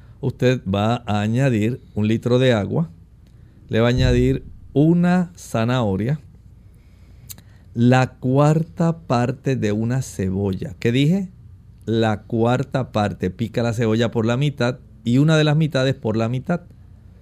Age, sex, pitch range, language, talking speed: 50-69, male, 105-135 Hz, Spanish, 135 wpm